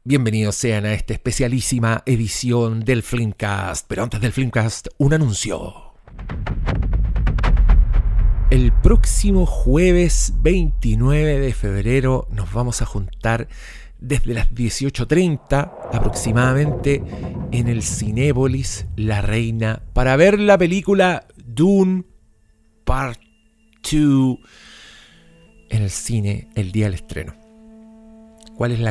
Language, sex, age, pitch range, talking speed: Spanish, male, 40-59, 110-145 Hz, 105 wpm